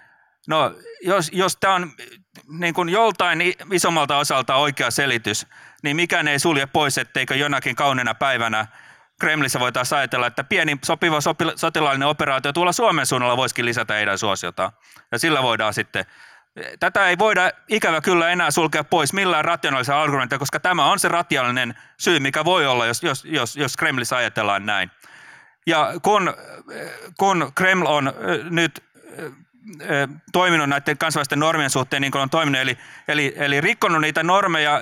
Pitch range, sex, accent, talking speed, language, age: 130-170 Hz, male, native, 155 wpm, Finnish, 30-49